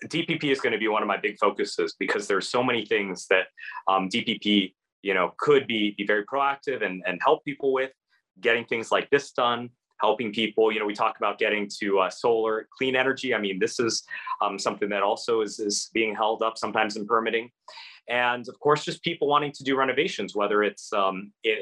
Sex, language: male, English